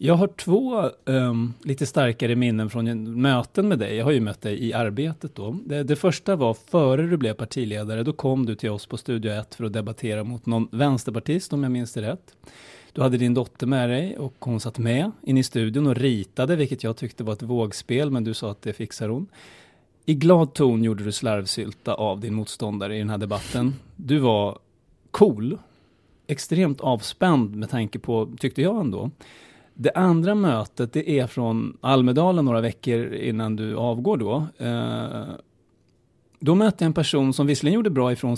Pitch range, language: 115-145 Hz, Swedish